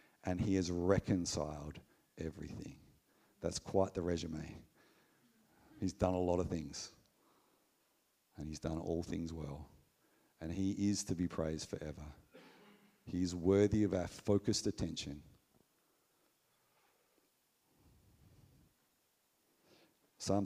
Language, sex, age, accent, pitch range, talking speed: English, male, 50-69, Australian, 85-110 Hz, 105 wpm